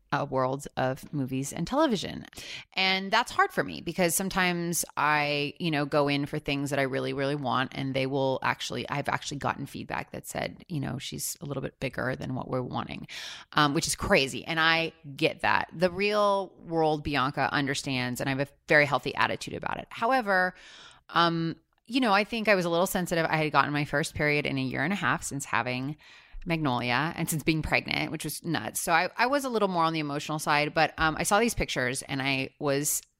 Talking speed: 215 wpm